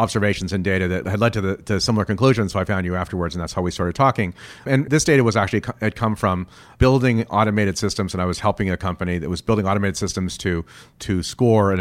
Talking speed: 250 wpm